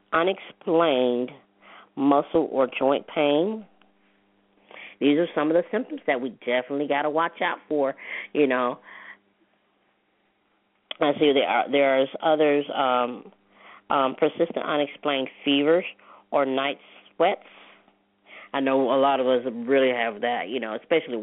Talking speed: 135 wpm